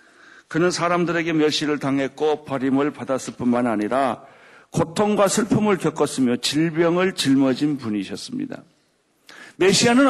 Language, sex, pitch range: Korean, male, 145-200 Hz